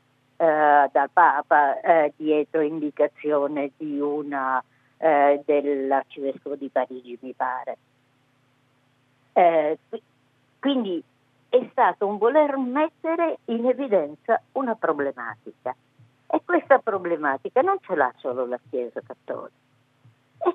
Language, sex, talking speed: Italian, female, 100 wpm